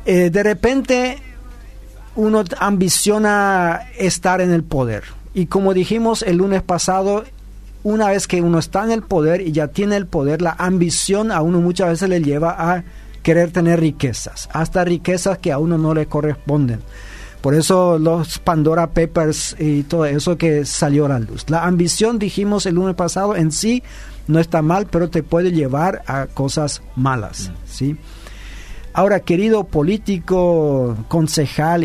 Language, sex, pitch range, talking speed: Spanish, male, 145-190 Hz, 160 wpm